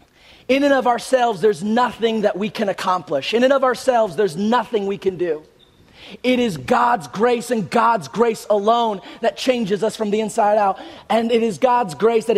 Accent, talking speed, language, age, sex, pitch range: American, 195 wpm, English, 30-49, male, 185-240 Hz